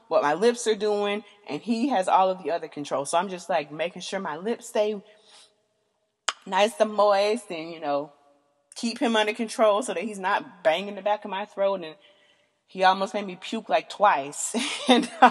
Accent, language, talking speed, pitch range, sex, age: American, English, 200 wpm, 165-215 Hz, female, 30-49